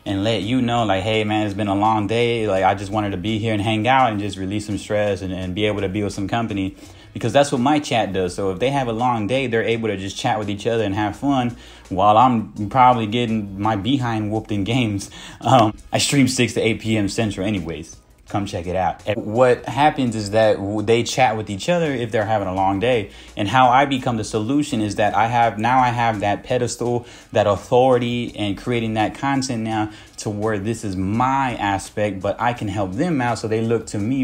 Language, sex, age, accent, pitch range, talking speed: English, male, 20-39, American, 100-120 Hz, 240 wpm